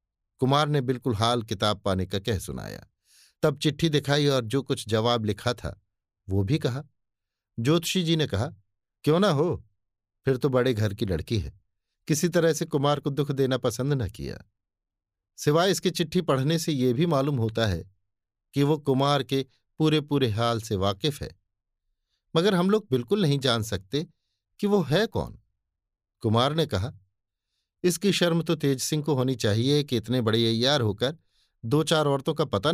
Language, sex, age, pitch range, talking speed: Hindi, male, 50-69, 100-150 Hz, 180 wpm